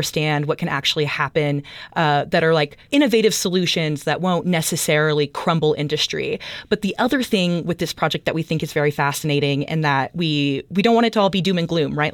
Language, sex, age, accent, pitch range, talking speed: English, female, 30-49, American, 155-200 Hz, 215 wpm